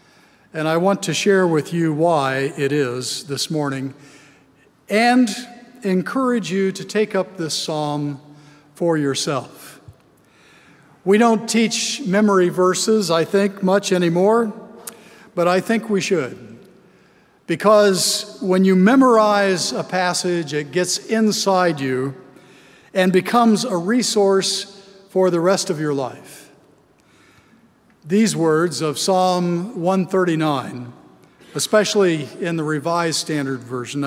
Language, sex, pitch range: English, male, 150-200 Hz